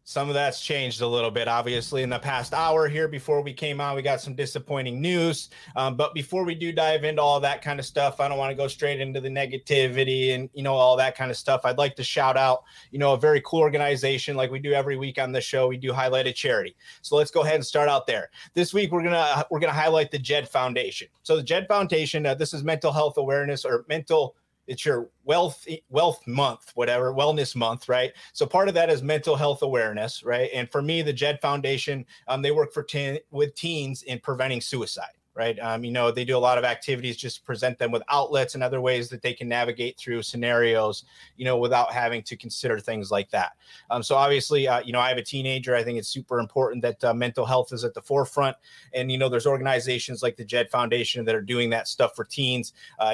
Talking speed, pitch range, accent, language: 240 wpm, 125-150 Hz, American, English